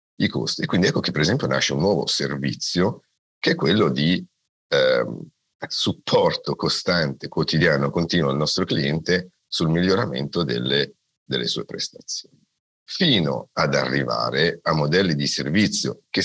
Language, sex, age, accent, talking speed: Italian, male, 50-69, native, 140 wpm